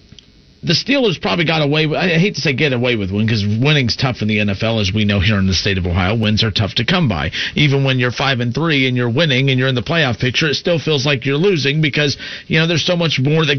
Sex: male